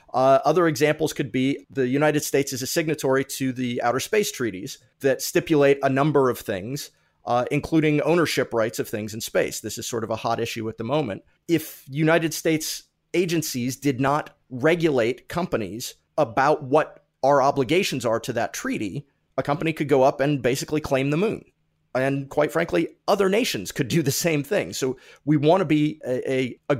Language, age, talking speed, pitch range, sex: English, 30-49, 190 wpm, 125-155 Hz, male